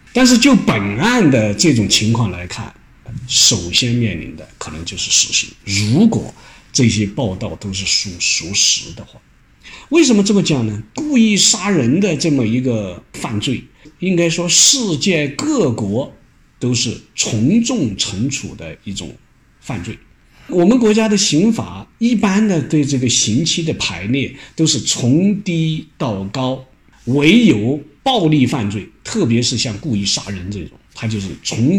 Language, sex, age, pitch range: Chinese, male, 50-69, 105-180 Hz